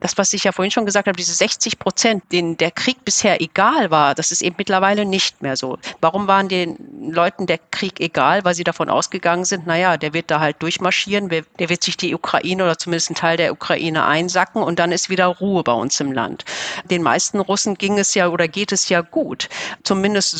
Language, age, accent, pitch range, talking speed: German, 50-69, German, 165-200 Hz, 220 wpm